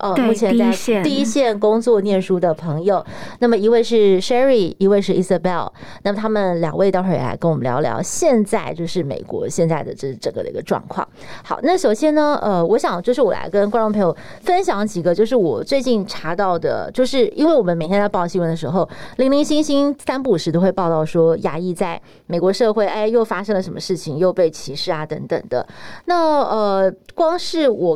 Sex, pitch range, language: female, 175-245 Hz, Chinese